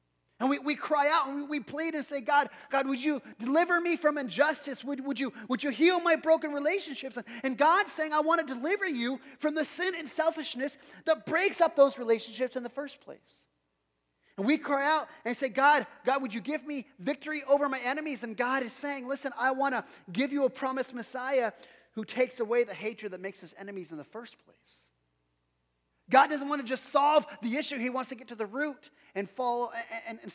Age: 30-49